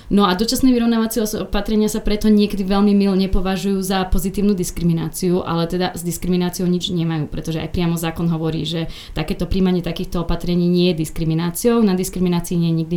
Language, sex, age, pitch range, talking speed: Slovak, female, 30-49, 170-195 Hz, 175 wpm